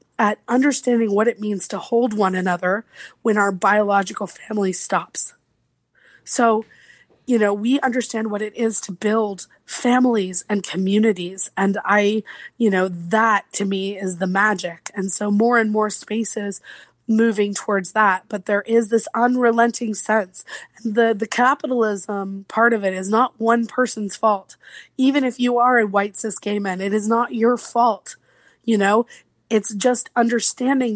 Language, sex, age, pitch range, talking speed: English, female, 20-39, 200-235 Hz, 165 wpm